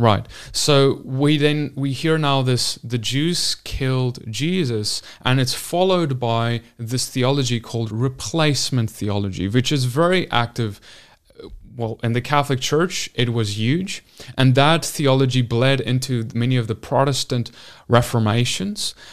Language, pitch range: English, 120-150 Hz